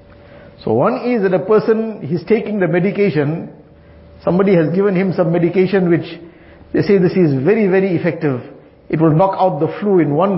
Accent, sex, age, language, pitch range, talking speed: Indian, male, 50-69, English, 160-195 Hz, 185 wpm